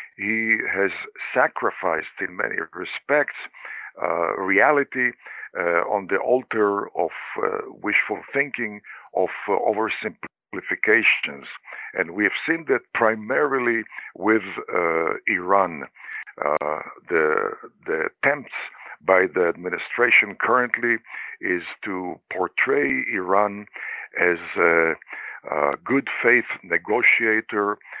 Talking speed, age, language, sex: 100 wpm, 60-79, English, male